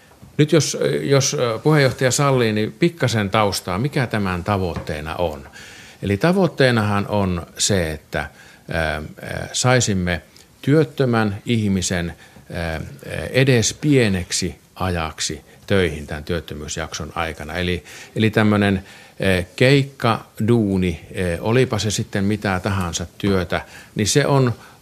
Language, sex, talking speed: Finnish, male, 100 wpm